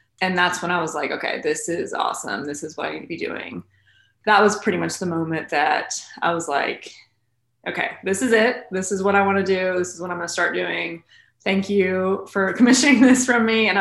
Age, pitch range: 20-39, 160-190 Hz